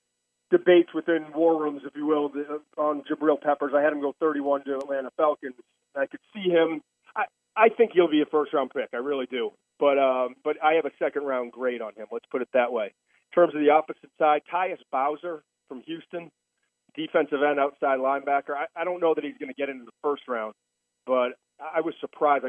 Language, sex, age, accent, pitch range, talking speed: English, male, 40-59, American, 130-155 Hz, 210 wpm